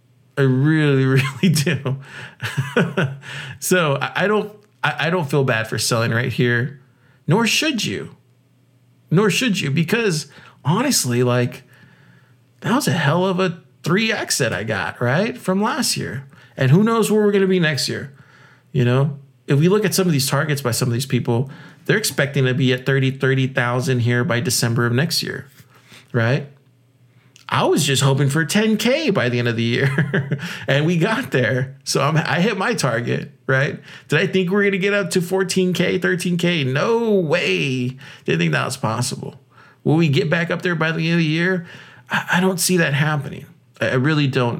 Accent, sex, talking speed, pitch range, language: American, male, 185 wpm, 125-175 Hz, English